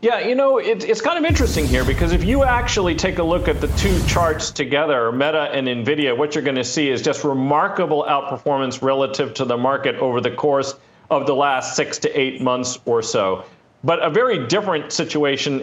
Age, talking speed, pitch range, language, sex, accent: 40-59, 205 wpm, 140-170 Hz, English, male, American